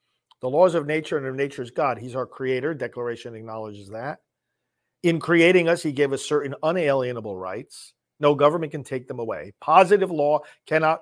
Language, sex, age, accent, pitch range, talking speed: English, male, 50-69, American, 130-180 Hz, 180 wpm